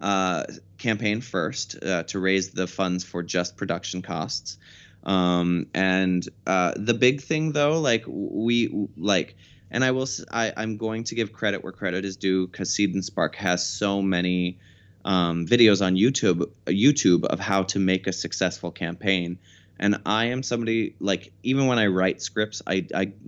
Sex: male